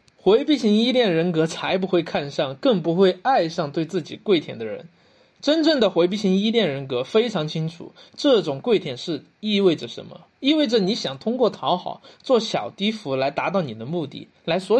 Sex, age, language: male, 20-39, Chinese